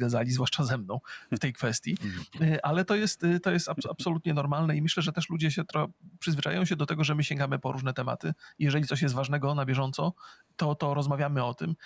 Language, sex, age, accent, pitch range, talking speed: Polish, male, 30-49, native, 135-165 Hz, 205 wpm